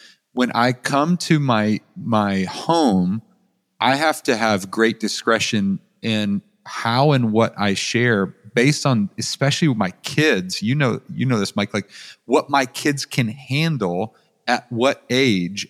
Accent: American